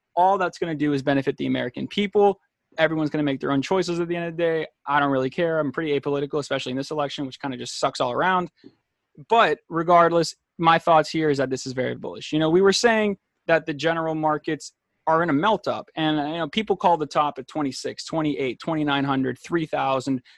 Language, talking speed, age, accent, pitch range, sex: English, 230 wpm, 20-39, American, 140-180 Hz, male